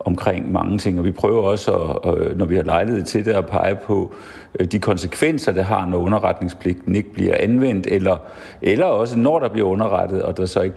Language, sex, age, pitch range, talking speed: Danish, male, 50-69, 90-105 Hz, 205 wpm